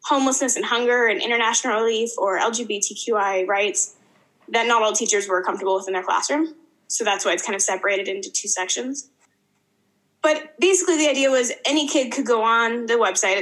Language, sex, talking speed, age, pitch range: English, female, 185 wpm, 10-29, 205-265 Hz